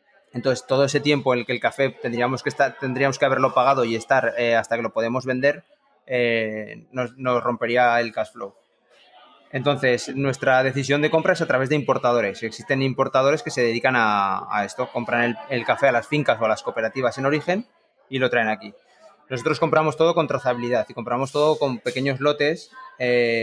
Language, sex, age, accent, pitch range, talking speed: Spanish, male, 20-39, Spanish, 120-145 Hz, 195 wpm